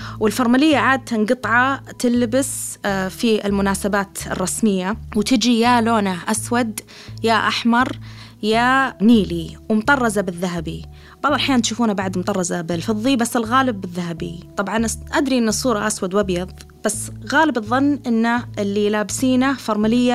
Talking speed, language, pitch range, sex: 115 wpm, Arabic, 185-235 Hz, female